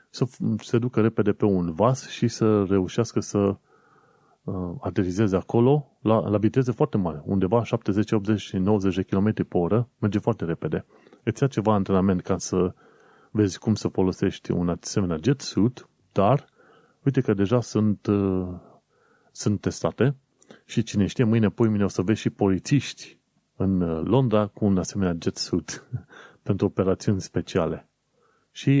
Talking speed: 150 wpm